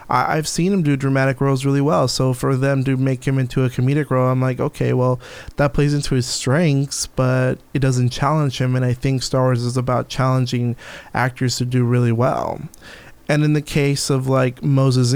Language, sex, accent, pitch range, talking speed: English, male, American, 125-145 Hz, 205 wpm